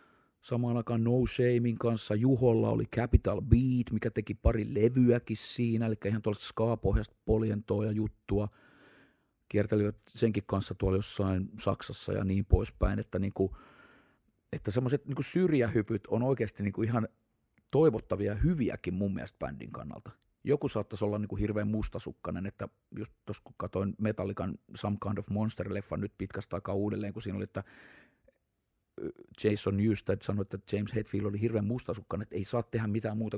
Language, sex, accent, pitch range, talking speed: Finnish, male, native, 100-120 Hz, 155 wpm